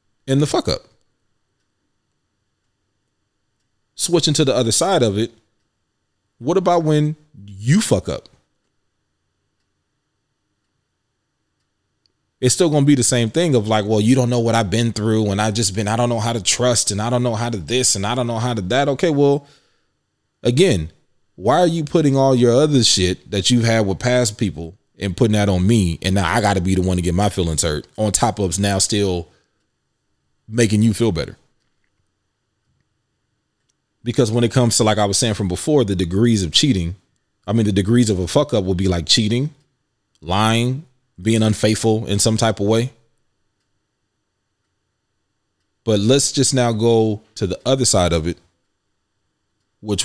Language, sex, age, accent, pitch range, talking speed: English, male, 20-39, American, 100-120 Hz, 175 wpm